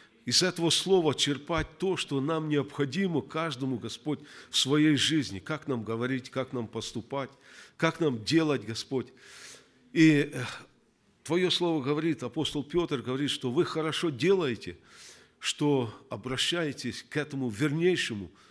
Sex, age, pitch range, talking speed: male, 50-69, 115-155 Hz, 130 wpm